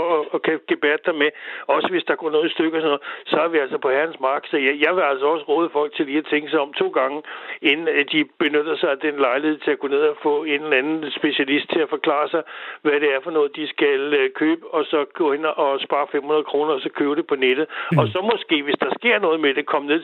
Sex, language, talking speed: male, Danish, 275 wpm